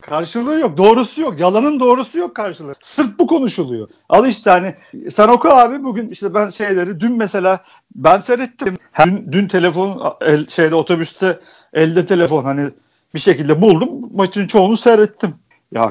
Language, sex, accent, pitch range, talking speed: Turkish, male, native, 165-230 Hz, 155 wpm